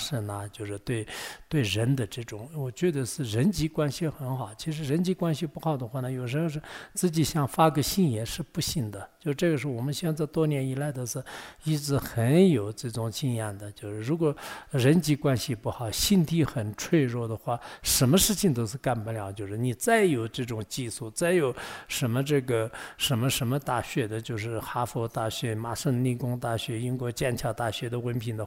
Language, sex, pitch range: English, male, 115-155 Hz